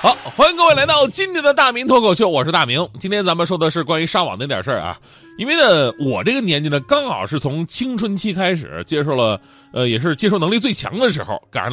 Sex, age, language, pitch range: male, 30-49, Chinese, 130-190 Hz